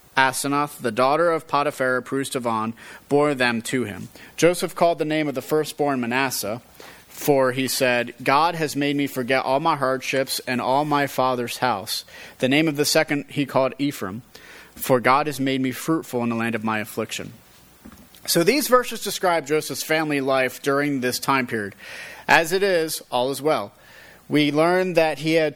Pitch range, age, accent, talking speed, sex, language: 125-160 Hz, 30-49, American, 180 wpm, male, English